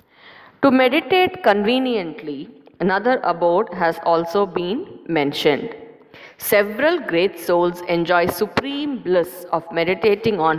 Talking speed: 100 wpm